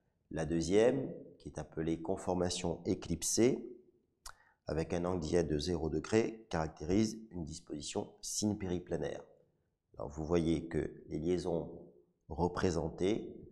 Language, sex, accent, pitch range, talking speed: French, male, French, 85-105 Hz, 105 wpm